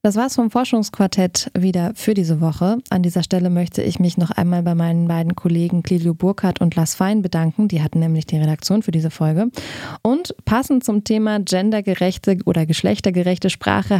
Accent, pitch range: German, 170-210 Hz